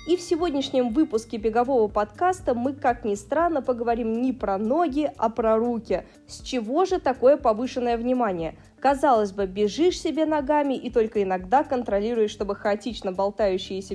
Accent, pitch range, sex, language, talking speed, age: native, 205-260 Hz, female, Russian, 150 wpm, 20-39